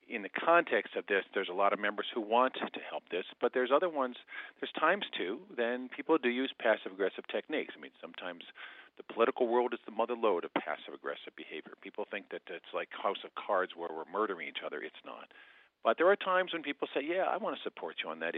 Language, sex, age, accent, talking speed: English, male, 50-69, American, 230 wpm